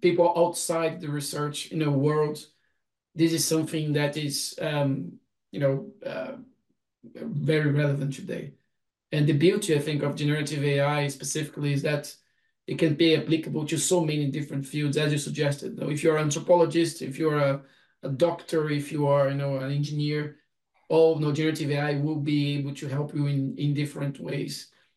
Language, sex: English, male